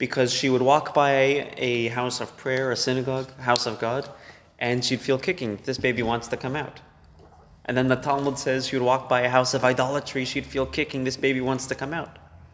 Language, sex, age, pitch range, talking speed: English, male, 20-39, 120-135 Hz, 215 wpm